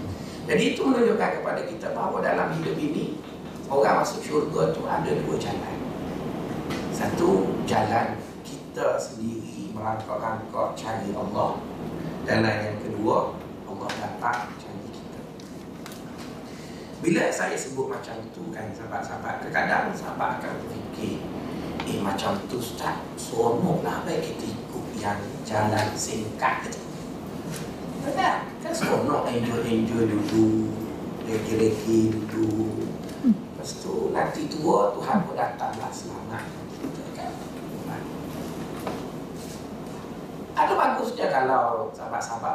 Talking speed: 100 wpm